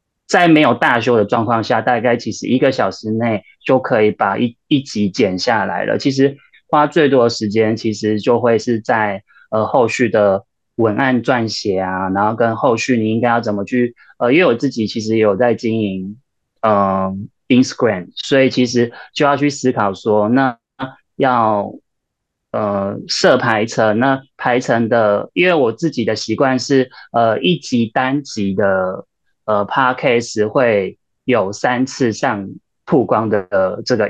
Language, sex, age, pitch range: Chinese, male, 20-39, 105-130 Hz